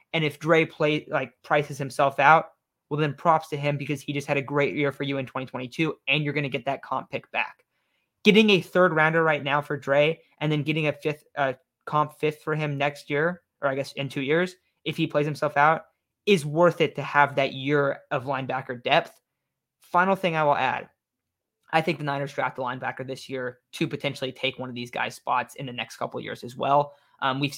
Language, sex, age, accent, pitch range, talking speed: English, male, 20-39, American, 135-150 Hz, 230 wpm